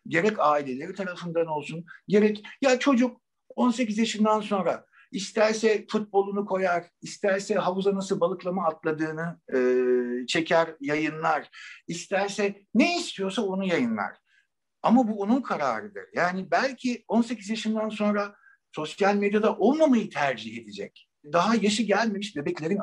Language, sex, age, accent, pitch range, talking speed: Turkish, male, 60-79, native, 170-230 Hz, 115 wpm